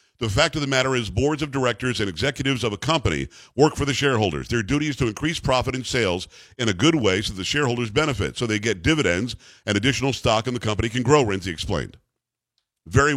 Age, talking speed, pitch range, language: 50-69, 225 wpm, 110-135 Hz, English